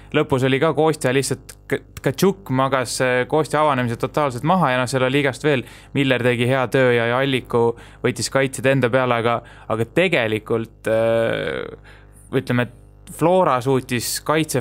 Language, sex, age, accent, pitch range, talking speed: English, male, 20-39, Finnish, 115-135 Hz, 135 wpm